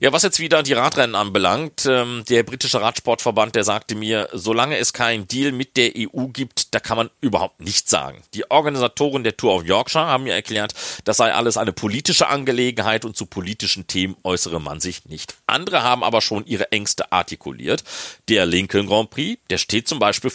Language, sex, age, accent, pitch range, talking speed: German, male, 40-59, German, 95-130 Hz, 190 wpm